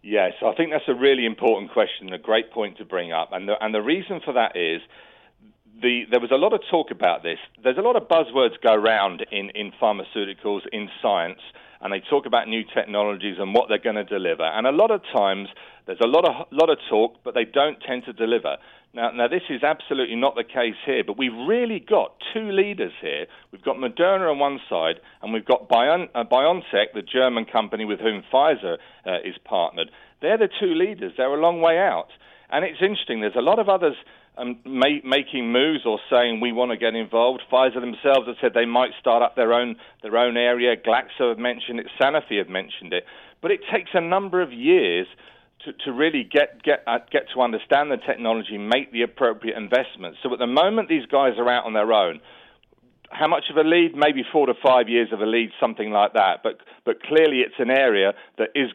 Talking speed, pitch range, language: 220 wpm, 115-165 Hz, English